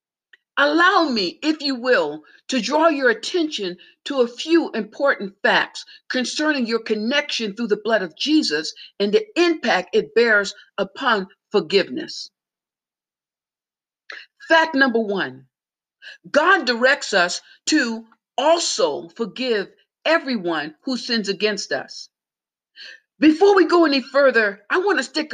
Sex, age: female, 50-69